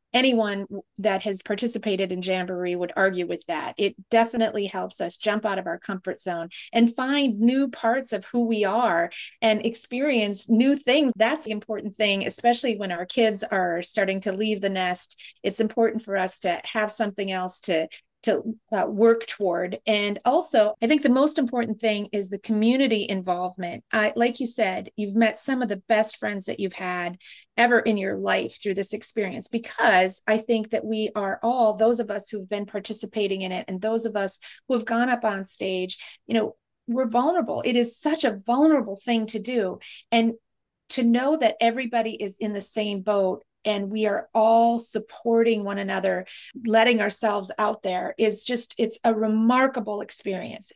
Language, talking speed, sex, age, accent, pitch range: English, 185 wpm, female, 30-49, American, 200-230 Hz